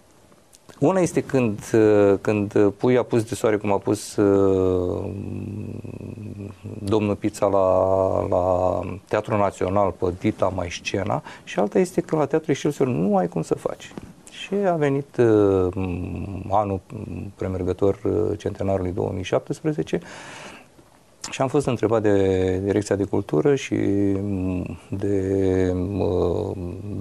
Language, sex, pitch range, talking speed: Romanian, male, 95-115 Hz, 120 wpm